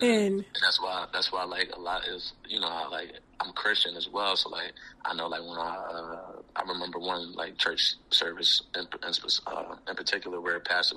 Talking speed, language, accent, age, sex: 230 wpm, English, American, 30-49, male